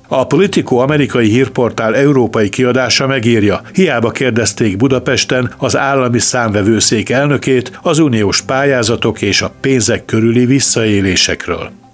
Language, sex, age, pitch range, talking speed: Hungarian, male, 60-79, 110-135 Hz, 110 wpm